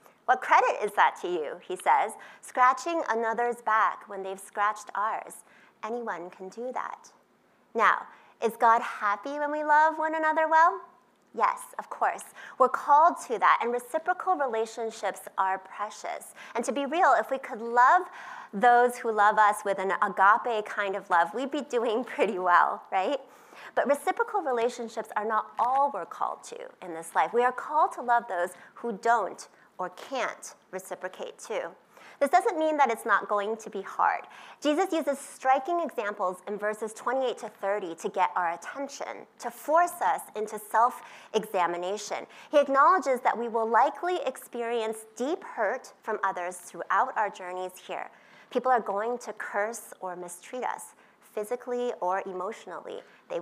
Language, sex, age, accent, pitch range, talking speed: English, female, 30-49, American, 205-295 Hz, 160 wpm